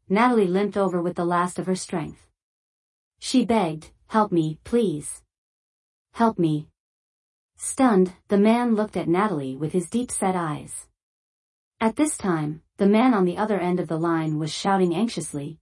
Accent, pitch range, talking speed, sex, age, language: American, 175-215 Hz, 160 wpm, female, 40-59, English